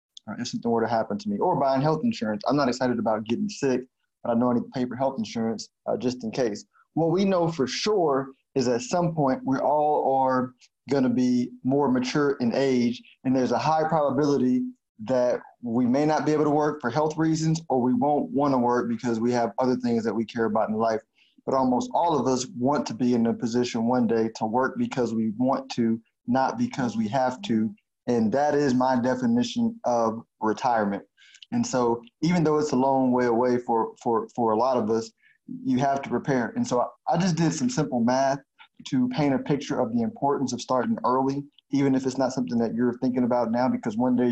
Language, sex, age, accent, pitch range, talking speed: English, male, 20-39, American, 120-155 Hz, 225 wpm